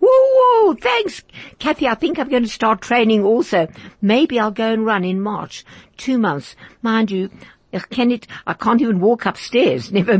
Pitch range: 195-240 Hz